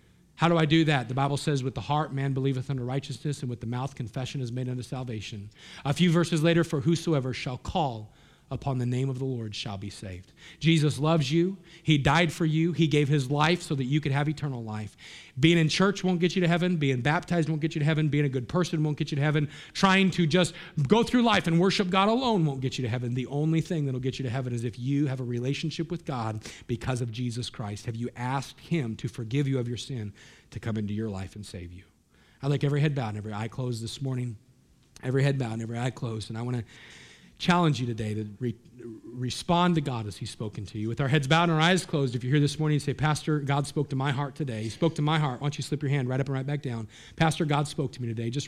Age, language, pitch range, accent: 40-59, English, 125-165 Hz, American